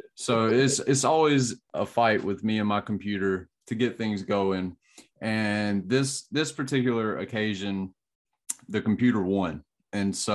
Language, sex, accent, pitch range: English, male, American, 95-115 Hz